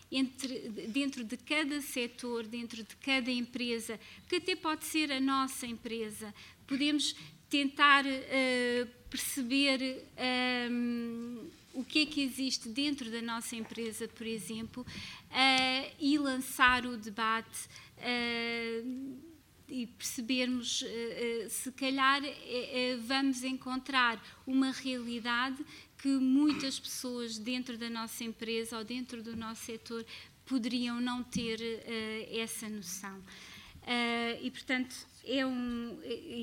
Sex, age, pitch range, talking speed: female, 20-39, 225-260 Hz, 105 wpm